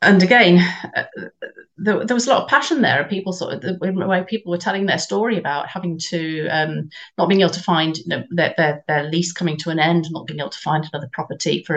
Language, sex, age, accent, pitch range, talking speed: English, female, 40-59, British, 150-180 Hz, 250 wpm